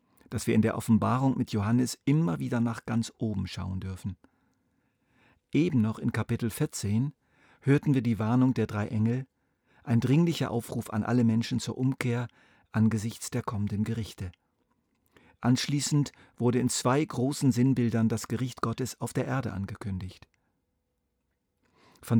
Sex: male